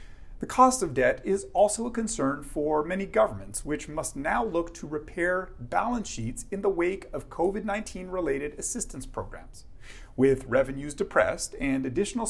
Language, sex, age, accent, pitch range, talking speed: English, male, 40-59, American, 130-200 Hz, 155 wpm